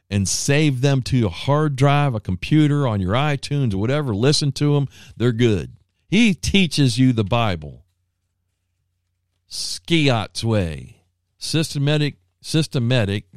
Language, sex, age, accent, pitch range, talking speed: English, male, 50-69, American, 90-125 Hz, 125 wpm